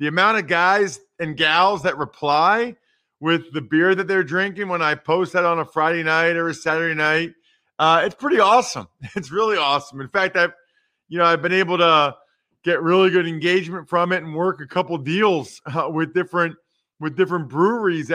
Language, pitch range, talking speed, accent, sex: English, 150-200 Hz, 190 wpm, American, male